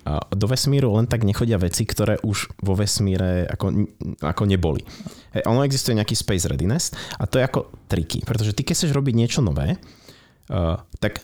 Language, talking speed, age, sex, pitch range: Czech, 165 wpm, 30-49, male, 95-120 Hz